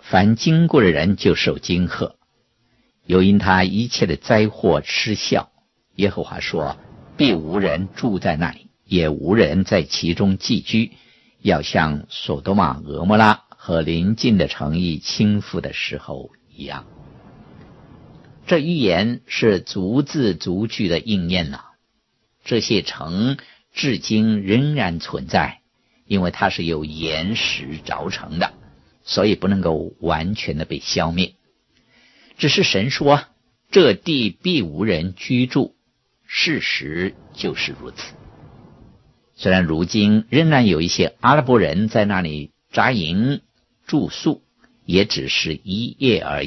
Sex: male